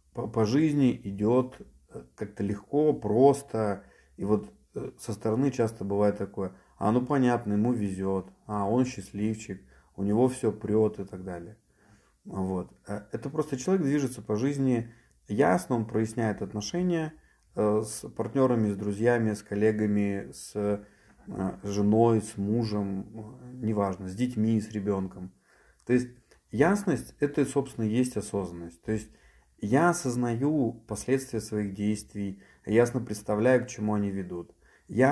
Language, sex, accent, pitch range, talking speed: Russian, male, native, 100-125 Hz, 130 wpm